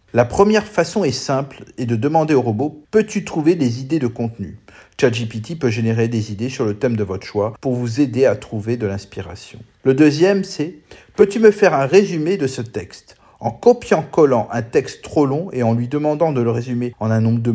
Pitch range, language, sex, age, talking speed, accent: 115-150 Hz, French, male, 40-59, 210 wpm, French